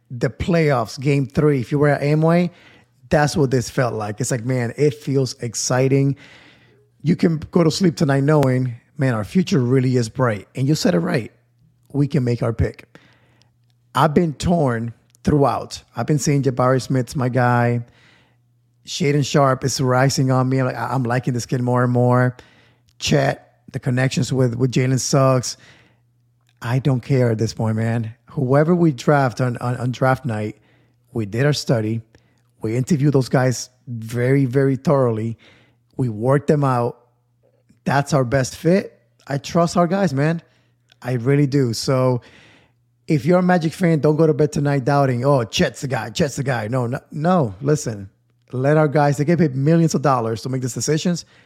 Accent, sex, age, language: American, male, 30-49, English